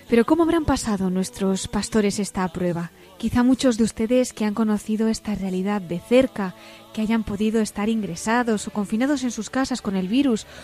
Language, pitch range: Spanish, 205-255 Hz